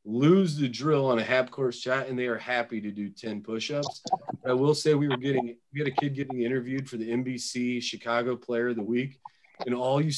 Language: English